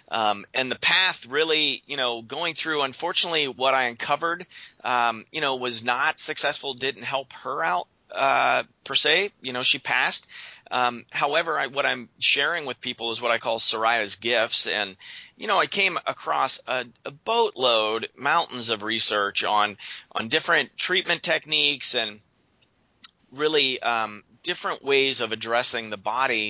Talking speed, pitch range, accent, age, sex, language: 160 wpm, 115-140 Hz, American, 30-49, male, English